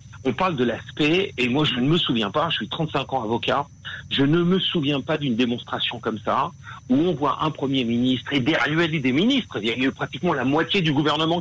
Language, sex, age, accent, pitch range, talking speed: French, male, 50-69, French, 125-155 Hz, 230 wpm